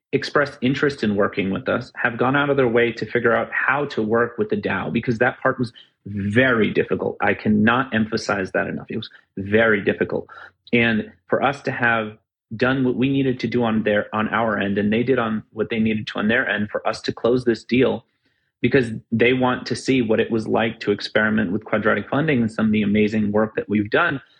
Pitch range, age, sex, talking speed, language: 110-130 Hz, 30-49, male, 225 wpm, English